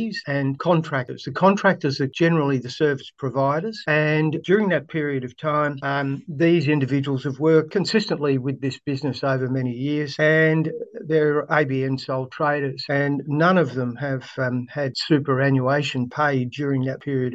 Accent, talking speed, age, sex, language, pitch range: Australian, 150 wpm, 50-69, male, English, 135-160 Hz